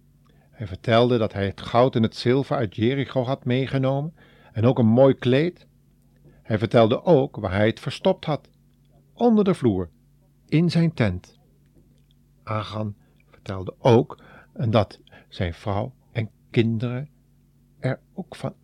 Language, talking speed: Dutch, 140 wpm